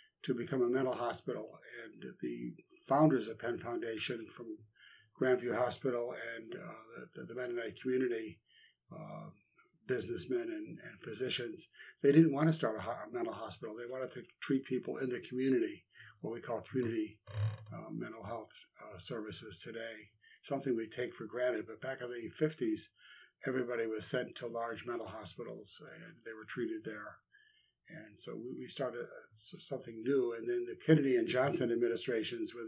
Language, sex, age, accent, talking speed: English, male, 60-79, American, 160 wpm